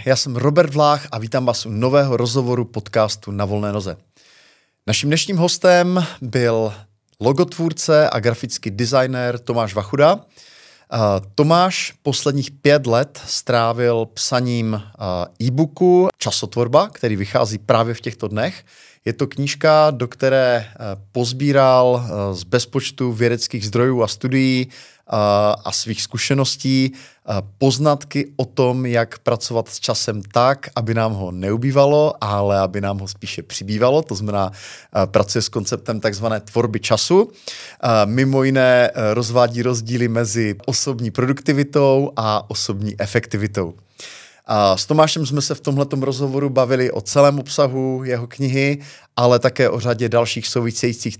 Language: Czech